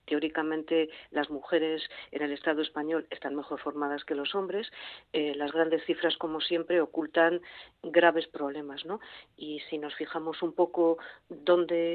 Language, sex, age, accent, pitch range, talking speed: Spanish, female, 40-59, Spanish, 140-165 Hz, 150 wpm